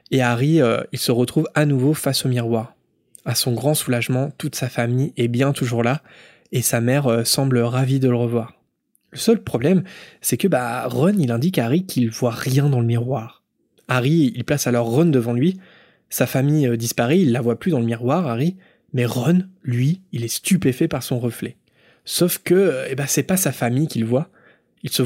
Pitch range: 120-160 Hz